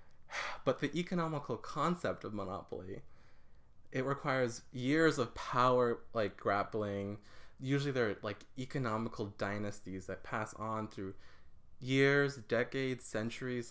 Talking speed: 110 wpm